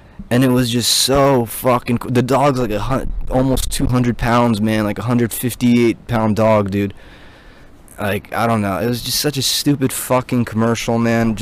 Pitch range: 95-125 Hz